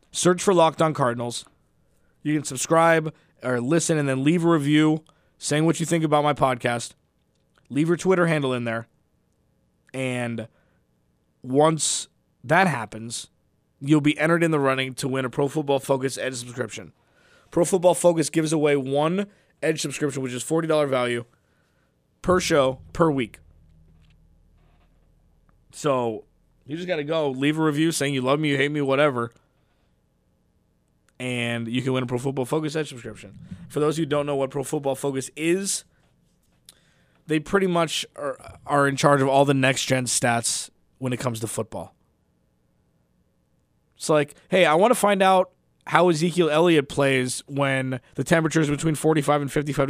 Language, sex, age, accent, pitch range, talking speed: English, male, 20-39, American, 120-155 Hz, 160 wpm